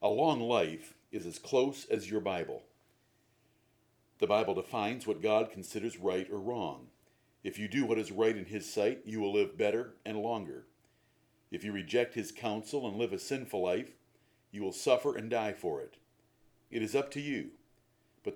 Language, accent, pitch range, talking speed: English, American, 105-140 Hz, 185 wpm